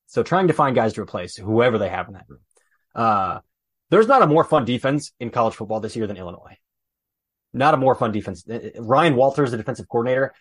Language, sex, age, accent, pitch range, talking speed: English, male, 20-39, American, 110-140 Hz, 215 wpm